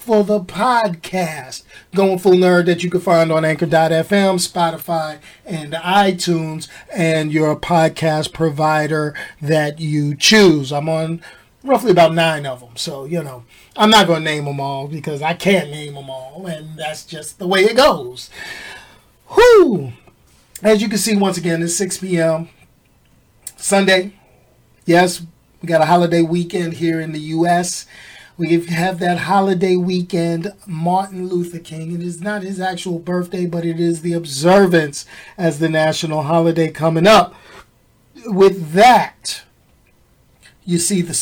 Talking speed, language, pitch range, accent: 150 wpm, English, 160-195 Hz, American